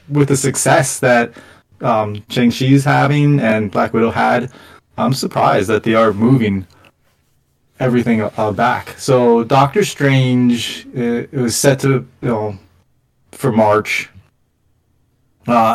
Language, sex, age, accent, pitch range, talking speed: English, male, 20-39, American, 110-130 Hz, 130 wpm